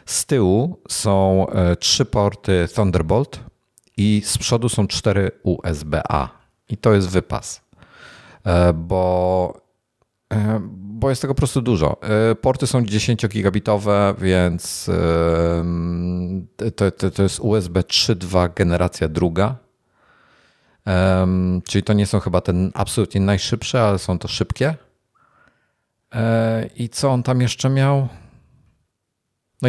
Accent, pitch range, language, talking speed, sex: native, 90-115 Hz, Polish, 110 wpm, male